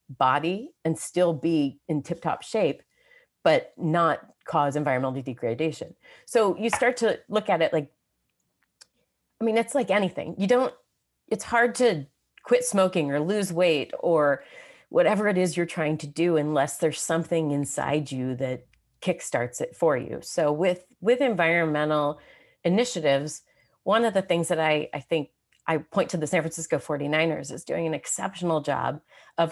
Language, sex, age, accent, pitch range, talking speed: English, female, 30-49, American, 150-195 Hz, 160 wpm